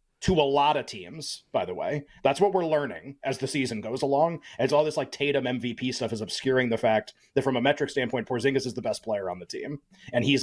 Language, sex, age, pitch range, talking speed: English, male, 30-49, 120-145 Hz, 245 wpm